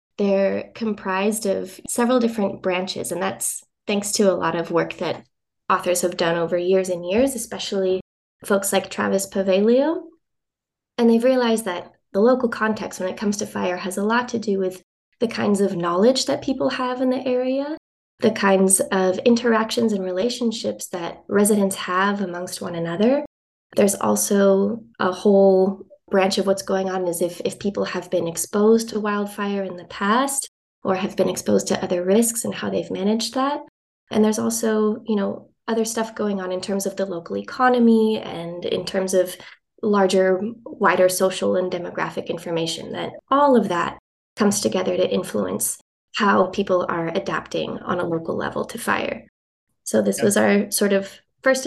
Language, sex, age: English, female, 20-39